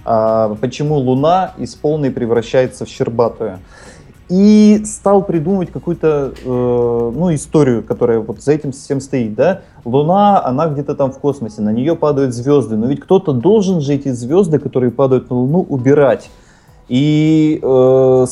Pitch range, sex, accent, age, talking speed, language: 120-150 Hz, male, native, 20-39, 140 wpm, Russian